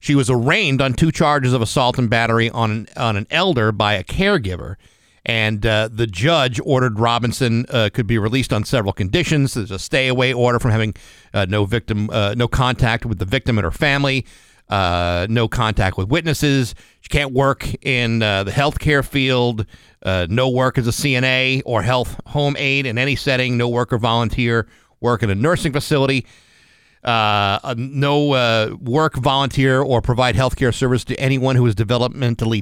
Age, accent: 50-69, American